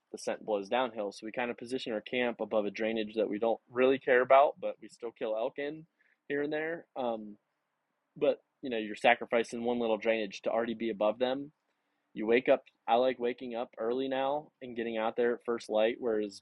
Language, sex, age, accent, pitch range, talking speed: English, male, 20-39, American, 105-120 Hz, 220 wpm